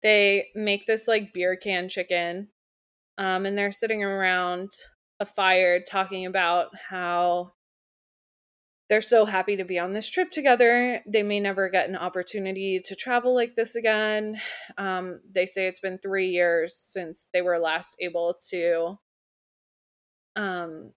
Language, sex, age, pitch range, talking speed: English, female, 20-39, 175-215 Hz, 145 wpm